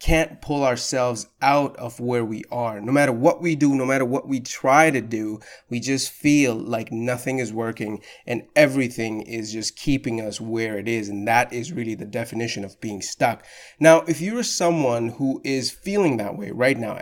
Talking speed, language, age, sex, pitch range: 200 wpm, English, 30-49, male, 115-150 Hz